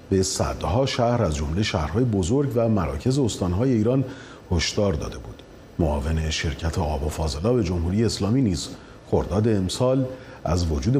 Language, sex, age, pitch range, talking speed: Persian, male, 40-59, 85-130 Hz, 135 wpm